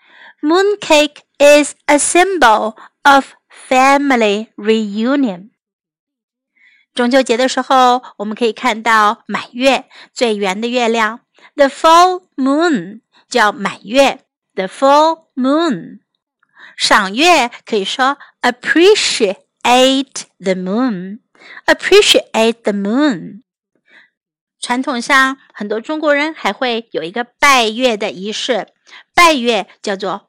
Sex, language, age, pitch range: female, Chinese, 50-69, 215-285 Hz